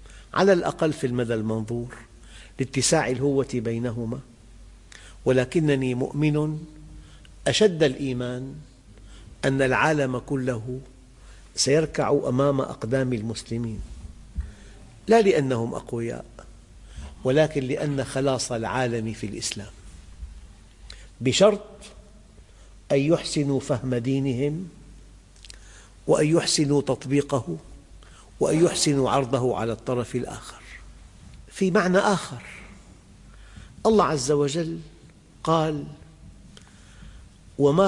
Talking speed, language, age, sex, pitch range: 80 wpm, English, 50-69, male, 105-145 Hz